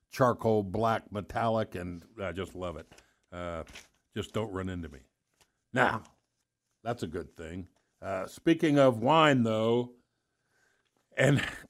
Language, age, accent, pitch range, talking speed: English, 60-79, American, 110-140 Hz, 130 wpm